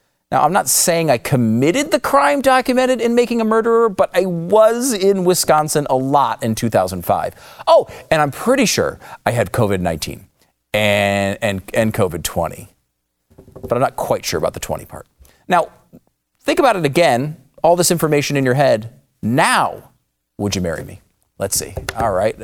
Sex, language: male, English